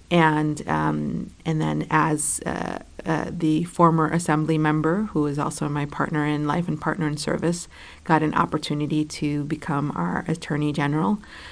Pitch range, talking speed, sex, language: 150-160 Hz, 155 wpm, female, English